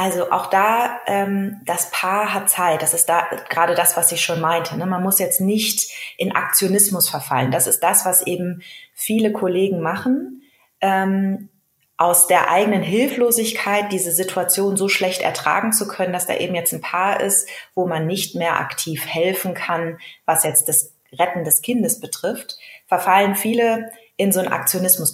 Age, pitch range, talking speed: 20-39, 170-200 Hz, 170 wpm